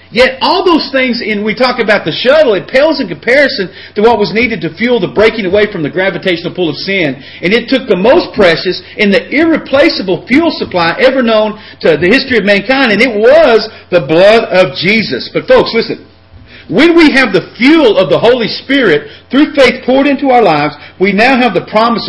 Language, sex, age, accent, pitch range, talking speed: English, male, 40-59, American, 175-250 Hz, 210 wpm